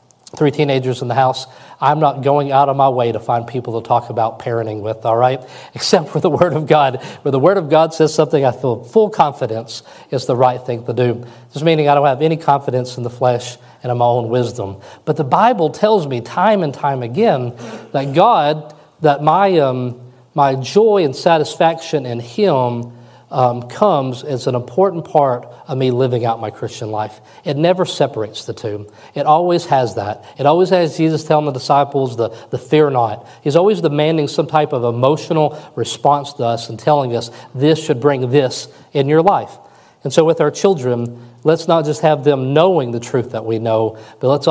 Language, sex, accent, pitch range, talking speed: English, male, American, 120-155 Hz, 205 wpm